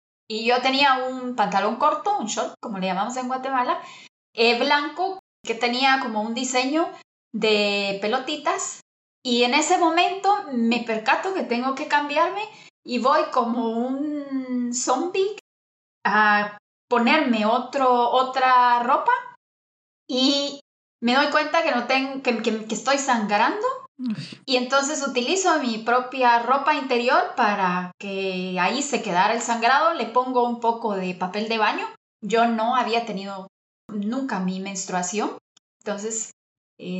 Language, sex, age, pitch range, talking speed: Spanish, female, 20-39, 210-270 Hz, 135 wpm